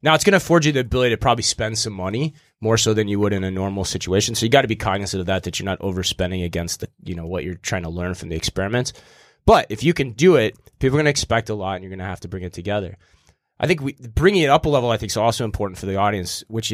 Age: 20-39